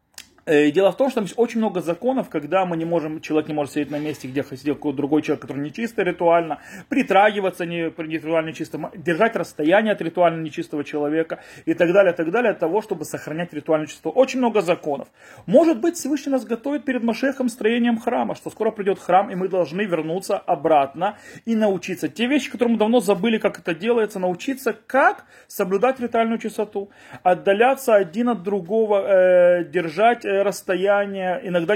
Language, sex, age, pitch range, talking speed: Russian, male, 30-49, 165-220 Hz, 175 wpm